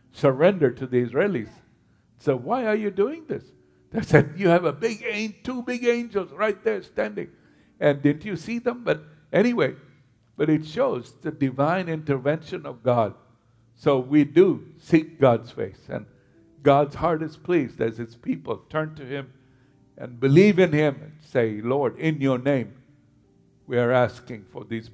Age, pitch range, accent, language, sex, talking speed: 60-79, 120-155 Hz, American, English, male, 165 wpm